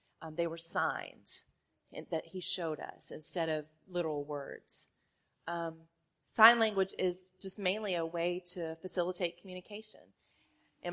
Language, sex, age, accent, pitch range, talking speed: English, female, 30-49, American, 165-215 Hz, 130 wpm